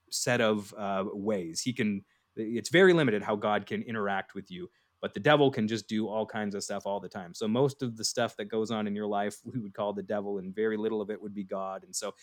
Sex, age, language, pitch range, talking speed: male, 30-49, English, 105-135 Hz, 265 wpm